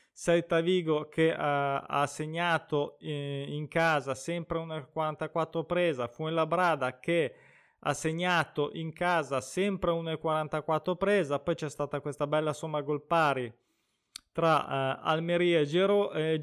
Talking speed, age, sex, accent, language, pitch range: 125 wpm, 20-39, male, native, Italian, 135-170 Hz